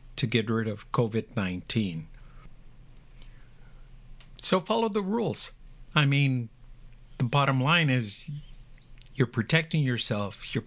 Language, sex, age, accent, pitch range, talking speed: English, male, 50-69, American, 115-140 Hz, 105 wpm